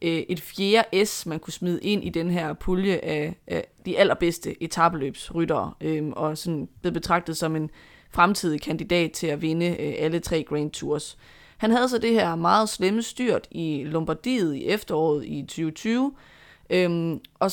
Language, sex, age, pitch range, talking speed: Danish, female, 20-39, 160-205 Hz, 170 wpm